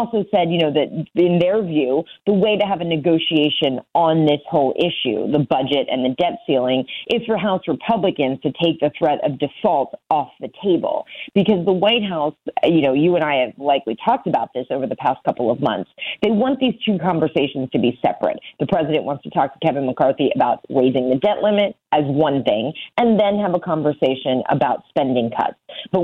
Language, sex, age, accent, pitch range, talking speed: English, female, 30-49, American, 135-185 Hz, 205 wpm